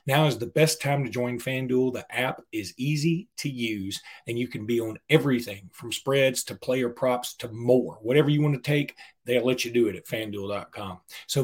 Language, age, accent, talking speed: English, 40-59, American, 210 wpm